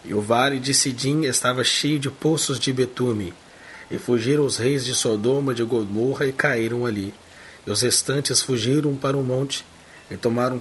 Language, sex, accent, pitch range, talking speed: English, male, Brazilian, 115-140 Hz, 180 wpm